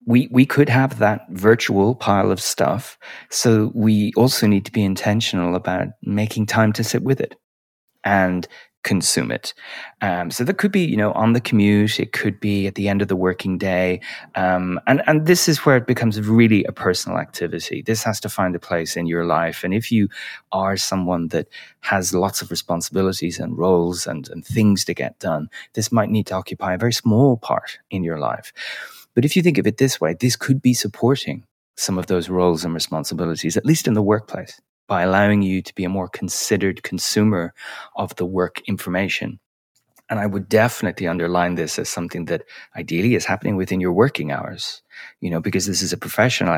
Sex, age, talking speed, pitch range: male, 30-49, 200 wpm, 90-115 Hz